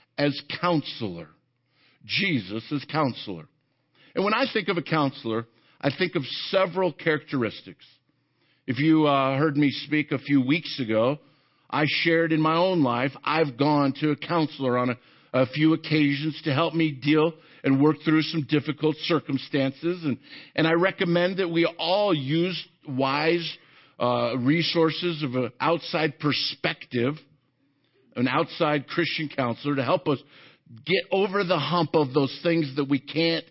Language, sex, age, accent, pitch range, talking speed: English, male, 50-69, American, 135-170 Hz, 150 wpm